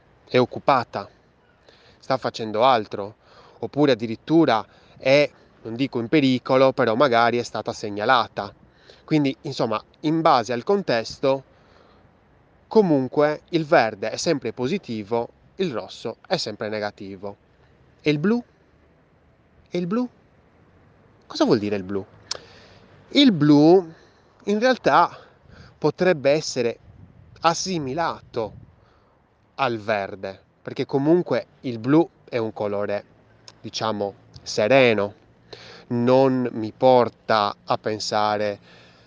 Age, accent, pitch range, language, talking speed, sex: 20-39, native, 105-145 Hz, Italian, 105 wpm, male